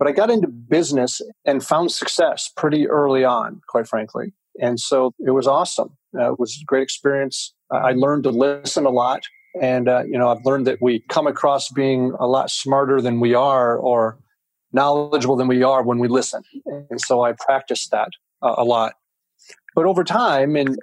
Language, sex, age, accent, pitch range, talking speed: English, male, 40-59, American, 125-145 Hz, 195 wpm